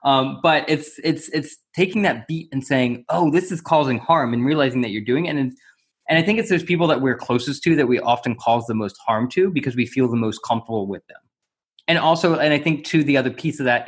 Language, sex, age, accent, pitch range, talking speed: English, male, 20-39, American, 115-145 Hz, 260 wpm